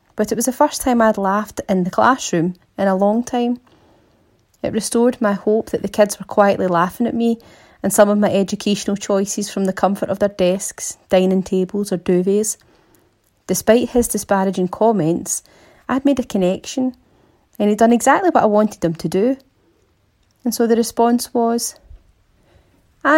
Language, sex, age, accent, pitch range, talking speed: English, female, 30-49, British, 200-280 Hz, 175 wpm